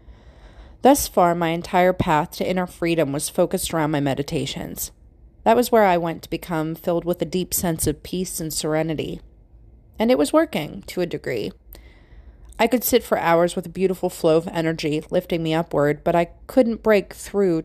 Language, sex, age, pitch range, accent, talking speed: English, female, 30-49, 155-200 Hz, American, 185 wpm